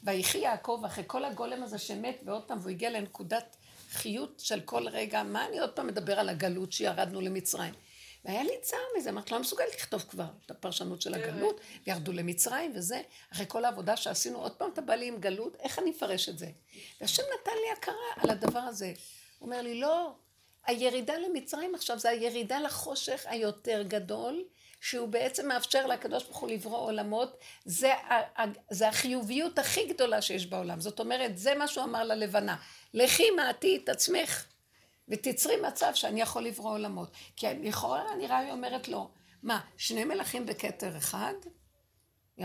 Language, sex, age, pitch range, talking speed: Hebrew, female, 60-79, 210-325 Hz, 170 wpm